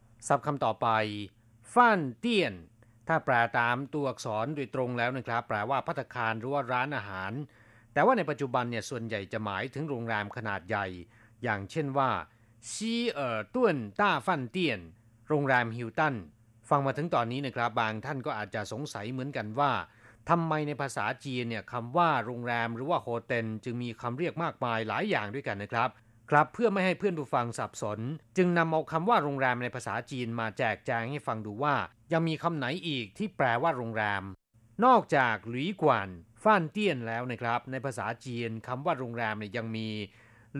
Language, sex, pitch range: Thai, male, 115-150 Hz